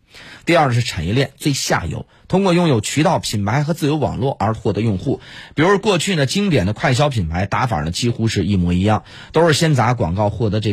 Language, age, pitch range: Chinese, 30-49, 100-145 Hz